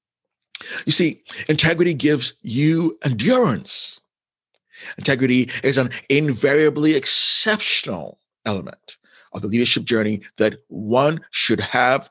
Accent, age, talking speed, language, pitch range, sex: American, 50-69, 100 wpm, English, 125-205 Hz, male